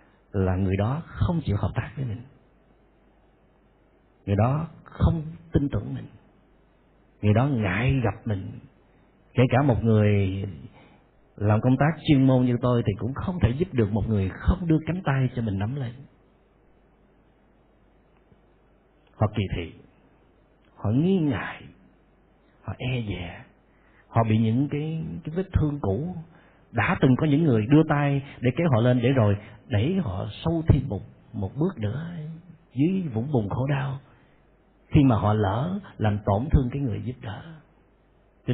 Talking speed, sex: 160 wpm, male